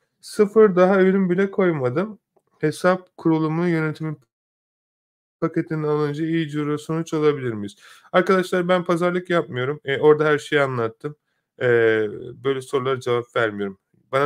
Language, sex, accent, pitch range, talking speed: Turkish, male, native, 130-175 Hz, 125 wpm